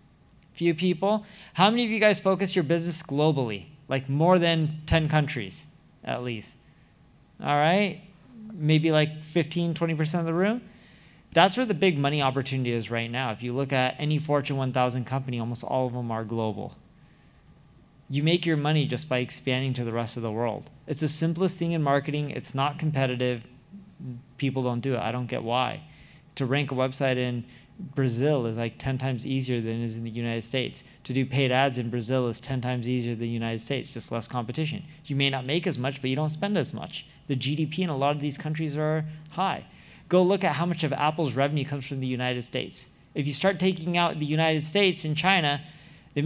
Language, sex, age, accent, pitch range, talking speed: English, male, 20-39, American, 130-165 Hz, 210 wpm